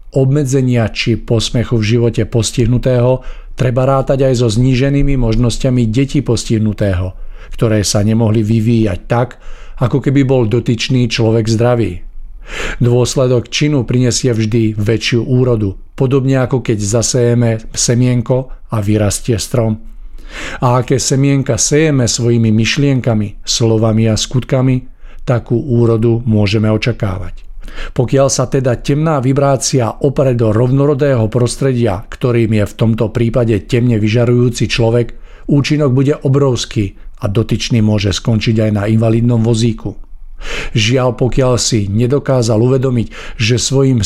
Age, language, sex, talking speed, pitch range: 50-69, Czech, male, 120 wpm, 110-130 Hz